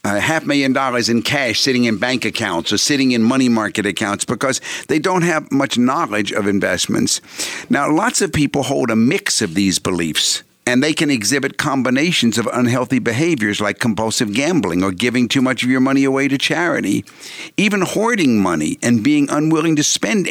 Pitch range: 110-140 Hz